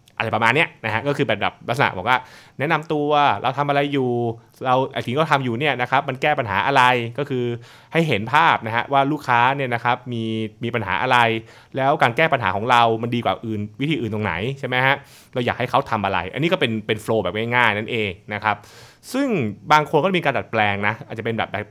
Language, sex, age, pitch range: Thai, male, 20-39, 110-145 Hz